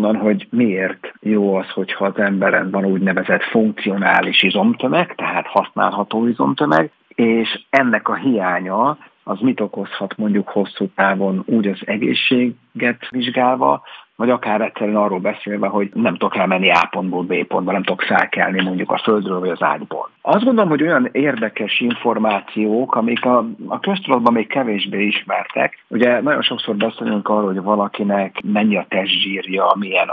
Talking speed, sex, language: 145 wpm, male, Hungarian